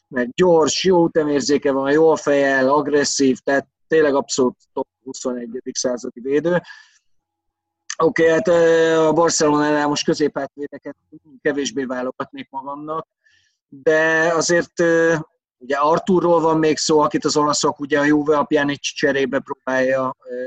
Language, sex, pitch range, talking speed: Hungarian, male, 135-160 Hz, 125 wpm